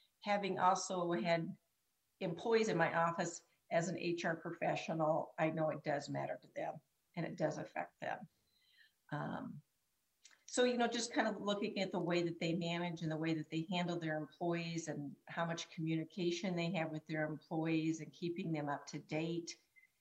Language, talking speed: English, 180 wpm